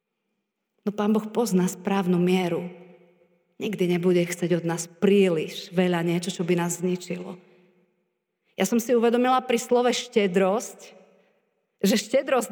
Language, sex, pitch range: Slovak, female, 185-225 Hz